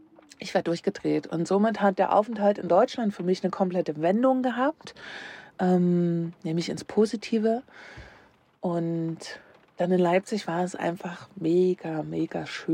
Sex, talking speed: female, 140 wpm